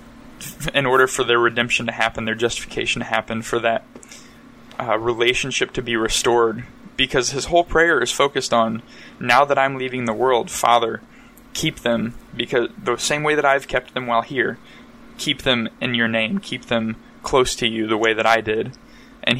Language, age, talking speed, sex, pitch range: English, 20-39, 185 wpm, male, 115-130 Hz